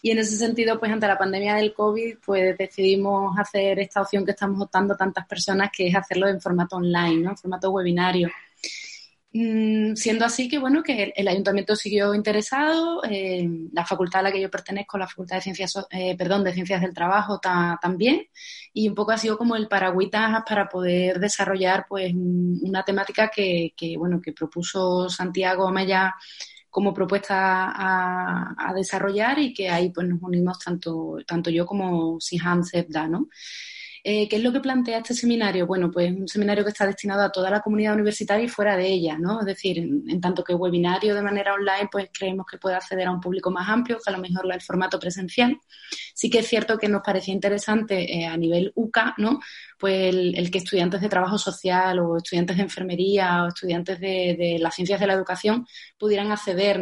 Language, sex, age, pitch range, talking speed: Spanish, female, 20-39, 180-210 Hz, 200 wpm